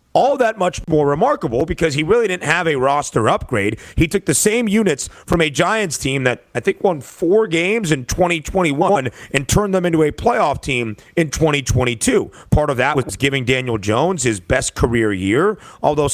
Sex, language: male, English